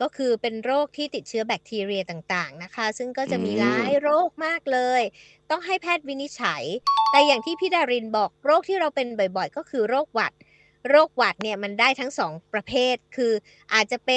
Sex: female